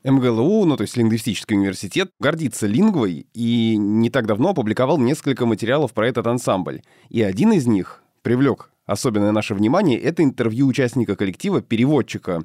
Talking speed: 150 wpm